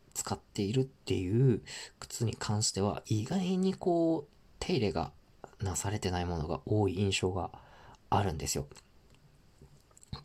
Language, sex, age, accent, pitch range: Japanese, male, 40-59, native, 95-140 Hz